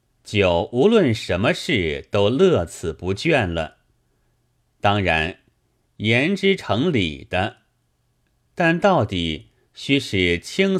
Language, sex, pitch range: Chinese, male, 90-130 Hz